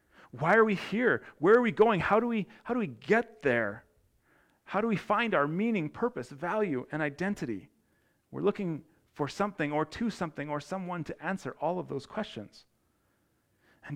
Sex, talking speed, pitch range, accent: male, 180 wpm, 140-190 Hz, American